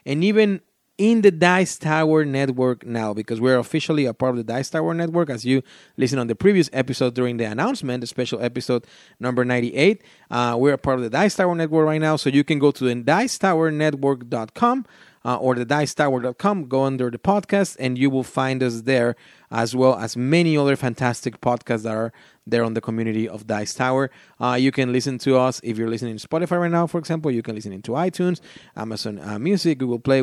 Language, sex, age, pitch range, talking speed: English, male, 30-49, 120-160 Hz, 215 wpm